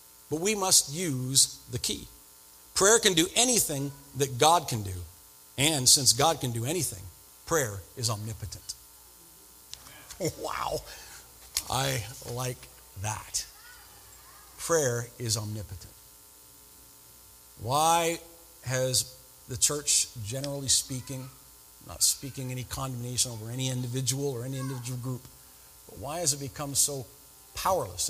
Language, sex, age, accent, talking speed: English, male, 50-69, American, 115 wpm